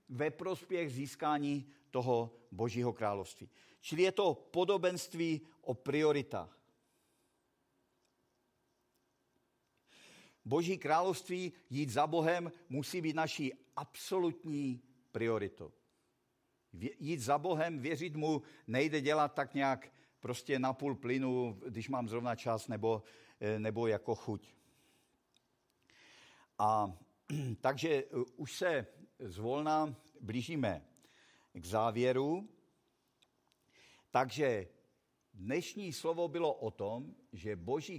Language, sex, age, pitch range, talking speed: Czech, male, 50-69, 120-160 Hz, 95 wpm